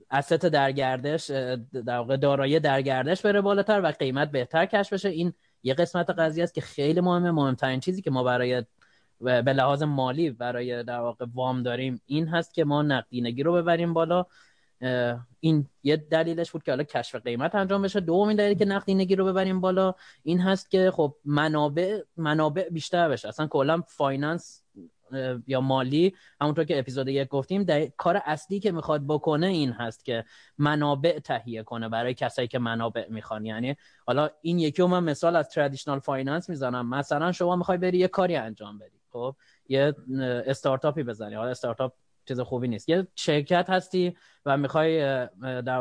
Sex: male